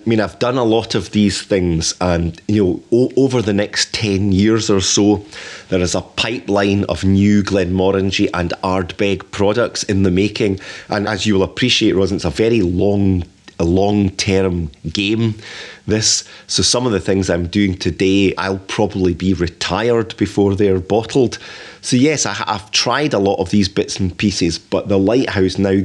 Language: English